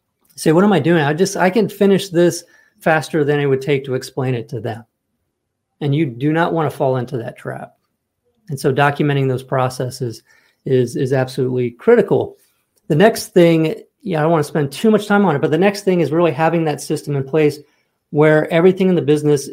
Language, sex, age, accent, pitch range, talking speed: English, male, 40-59, American, 135-165 Hz, 215 wpm